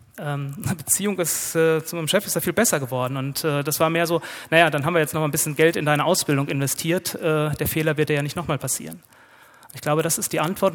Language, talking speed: German, 260 wpm